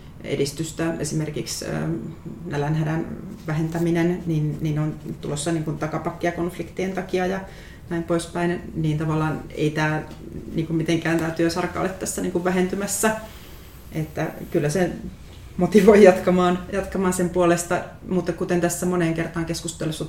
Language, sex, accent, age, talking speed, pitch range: Finnish, female, native, 30-49, 110 wpm, 160-180 Hz